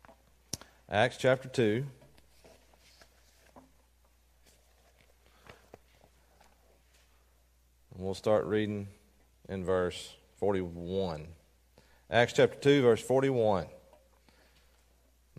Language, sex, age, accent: English, male, 40-59, American